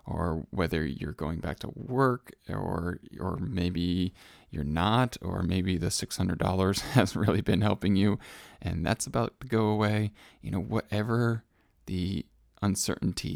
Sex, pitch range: male, 90-110 Hz